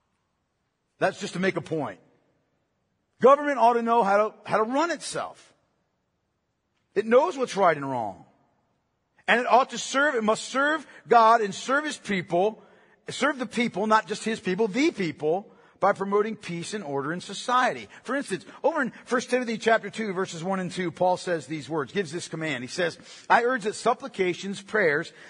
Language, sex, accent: English, male, American